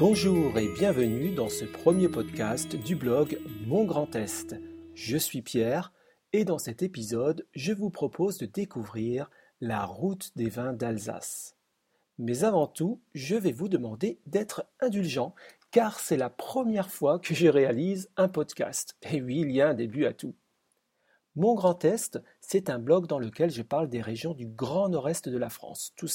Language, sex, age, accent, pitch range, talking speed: French, male, 40-59, French, 120-170 Hz, 175 wpm